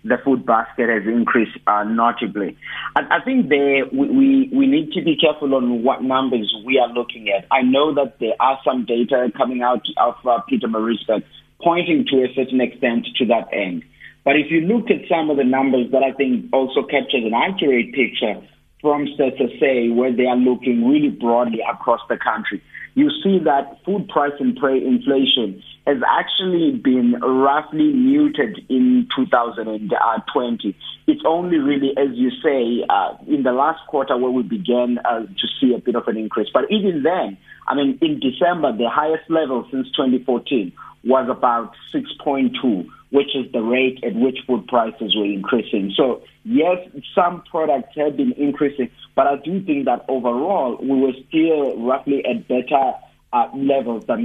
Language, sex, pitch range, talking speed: English, male, 125-180 Hz, 175 wpm